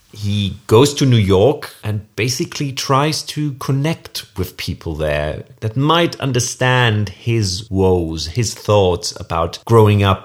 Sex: male